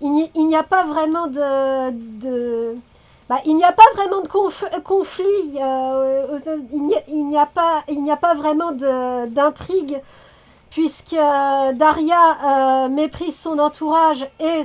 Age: 40-59